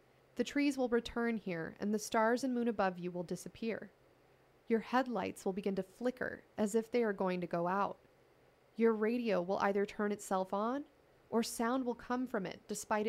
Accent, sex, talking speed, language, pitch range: American, female, 195 wpm, English, 195-235 Hz